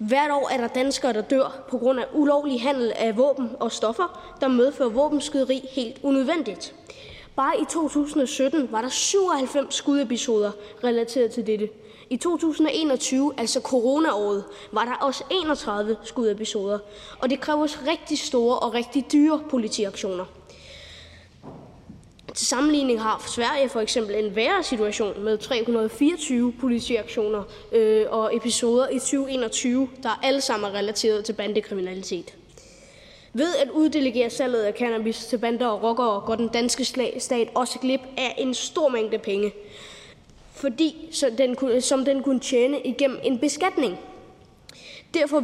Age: 20-39